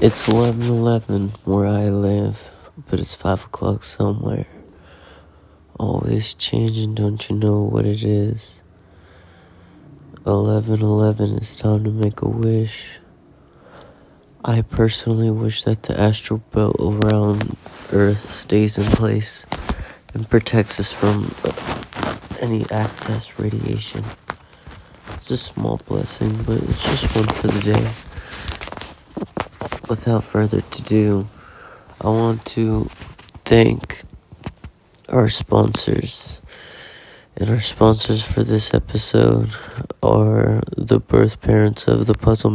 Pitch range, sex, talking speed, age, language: 105-115 Hz, male, 115 wpm, 30-49, English